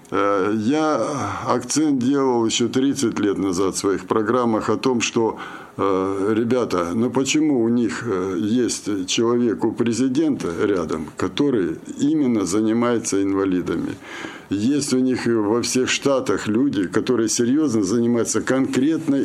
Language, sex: Russian, male